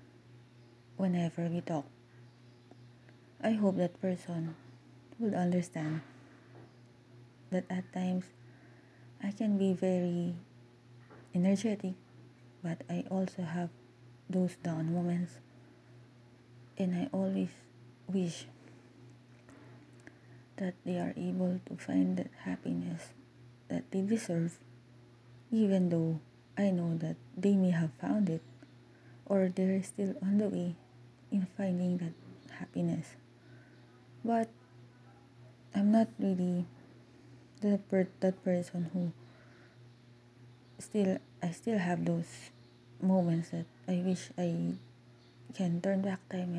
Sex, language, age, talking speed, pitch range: female, English, 20-39, 105 wpm, 120-185 Hz